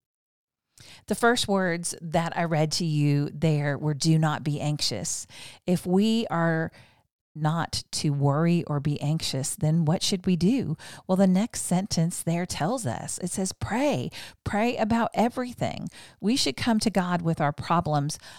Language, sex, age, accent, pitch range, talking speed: English, female, 40-59, American, 155-190 Hz, 160 wpm